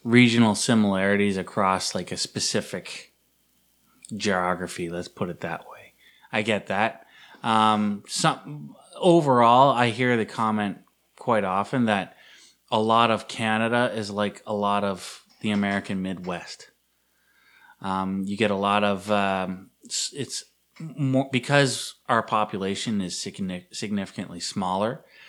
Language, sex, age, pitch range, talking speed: English, male, 20-39, 95-110 Hz, 125 wpm